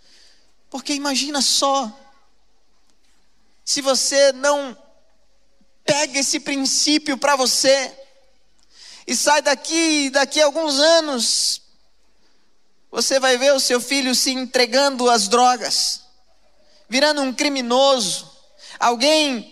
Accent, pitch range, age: Brazilian, 270-320 Hz, 20-39